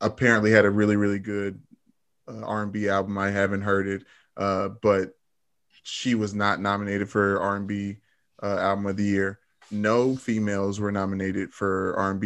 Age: 20-39